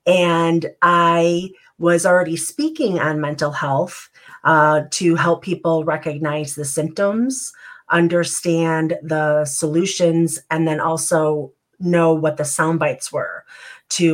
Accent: American